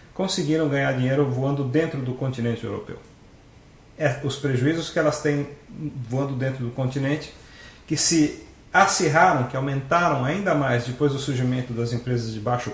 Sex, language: male, Portuguese